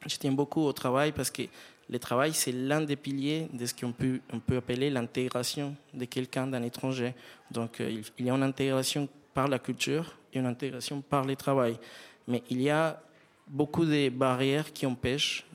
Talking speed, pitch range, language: 190 wpm, 125-145 Hz, French